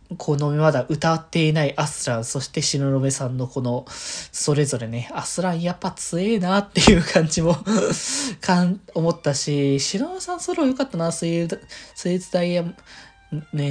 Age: 20-39